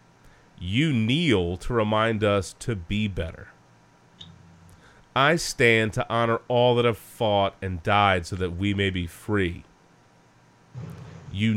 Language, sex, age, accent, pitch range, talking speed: English, male, 30-49, American, 95-125 Hz, 130 wpm